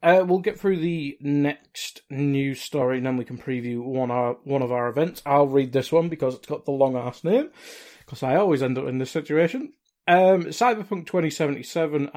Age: 20-39